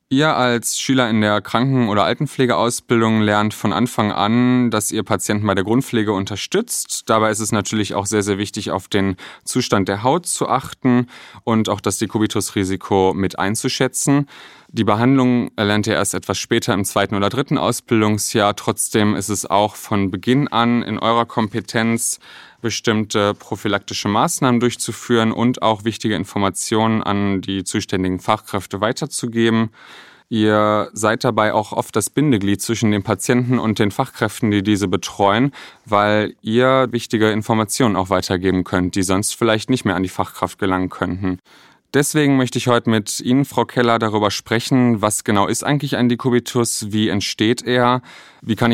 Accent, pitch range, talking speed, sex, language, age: German, 100-120 Hz, 160 wpm, male, German, 30-49